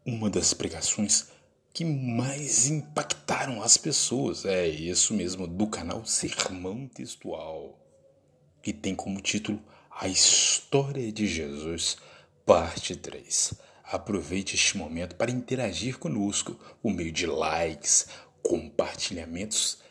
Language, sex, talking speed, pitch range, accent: Portuguese, male, 110 wpm, 95-135 Hz, Brazilian